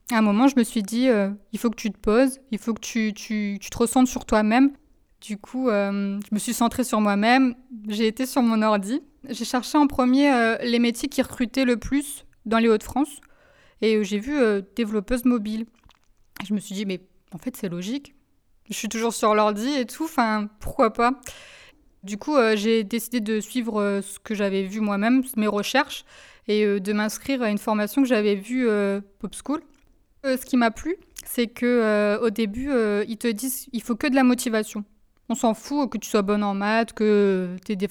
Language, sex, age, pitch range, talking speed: French, female, 20-39, 210-255 Hz, 220 wpm